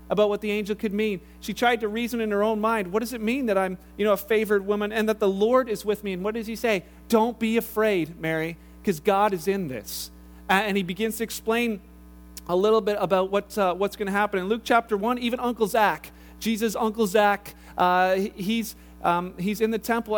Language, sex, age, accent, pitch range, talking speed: English, male, 40-59, American, 195-235 Hz, 230 wpm